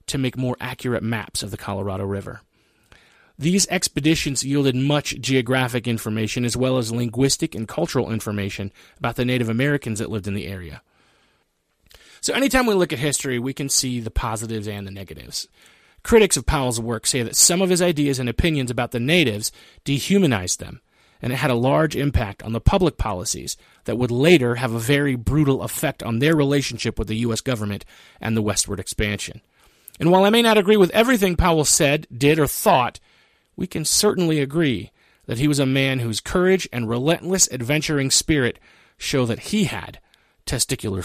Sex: male